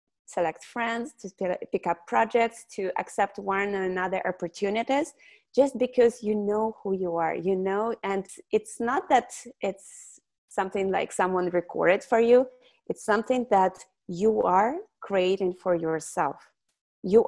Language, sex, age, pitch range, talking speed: English, female, 30-49, 180-230 Hz, 140 wpm